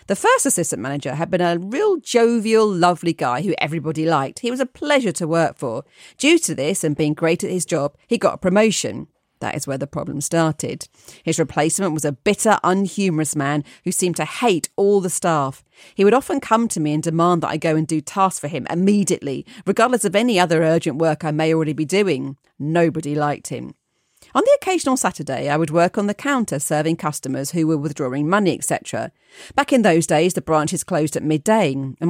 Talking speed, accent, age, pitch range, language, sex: 210 wpm, British, 40-59, 150-205 Hz, English, female